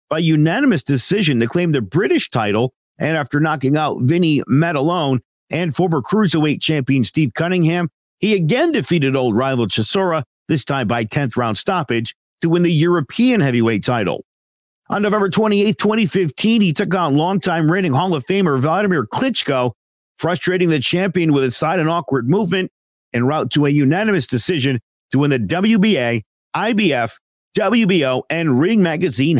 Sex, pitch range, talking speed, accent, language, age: male, 125-175 Hz, 155 wpm, American, English, 50-69